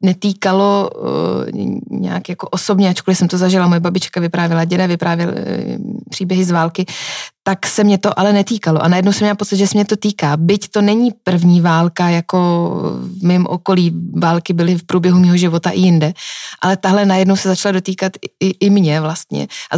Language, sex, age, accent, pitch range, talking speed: Czech, female, 20-39, native, 175-200 Hz, 190 wpm